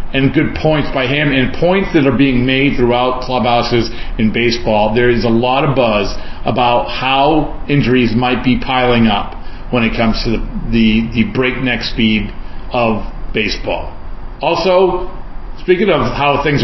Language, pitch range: English, 115-145 Hz